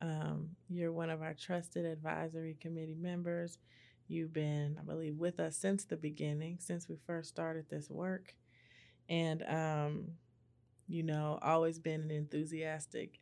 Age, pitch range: 20-39, 155-175 Hz